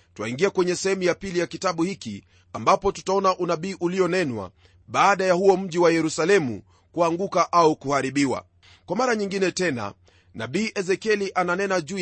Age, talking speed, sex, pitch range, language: 30-49, 145 wpm, male, 120-195 Hz, Swahili